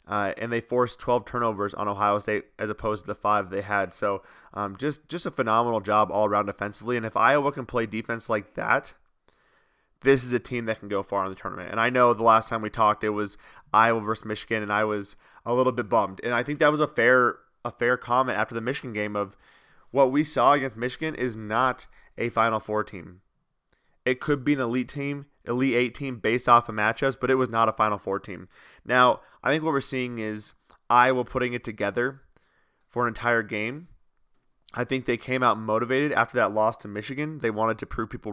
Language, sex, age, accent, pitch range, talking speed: English, male, 20-39, American, 110-130 Hz, 225 wpm